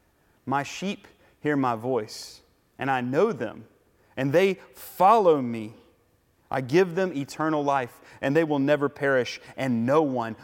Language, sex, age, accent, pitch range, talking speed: English, male, 30-49, American, 120-160 Hz, 150 wpm